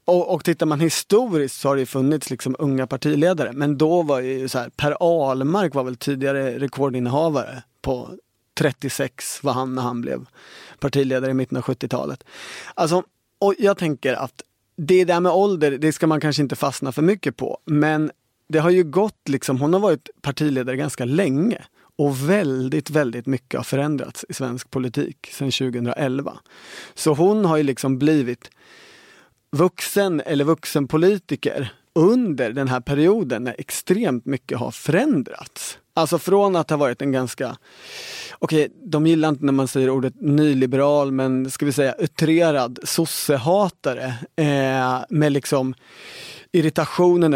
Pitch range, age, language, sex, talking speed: 135-165 Hz, 30-49, Swedish, male, 155 wpm